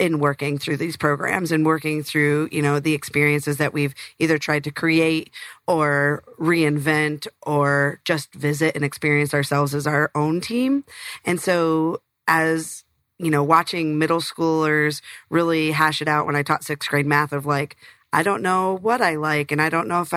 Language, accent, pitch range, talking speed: English, American, 150-175 Hz, 180 wpm